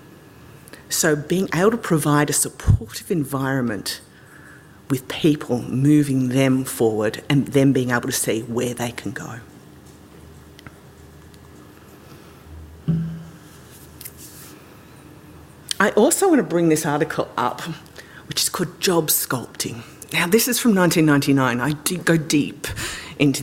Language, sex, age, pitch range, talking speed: English, female, 40-59, 130-180 Hz, 115 wpm